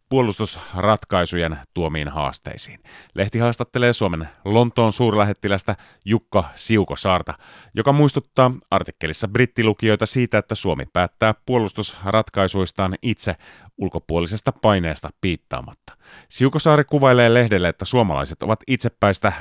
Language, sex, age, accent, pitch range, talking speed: Finnish, male, 30-49, native, 90-115 Hz, 95 wpm